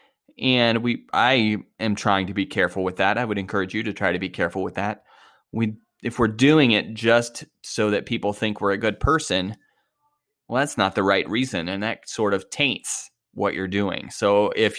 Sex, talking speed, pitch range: male, 205 wpm, 100-115 Hz